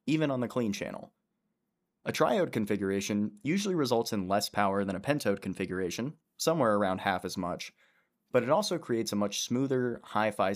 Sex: male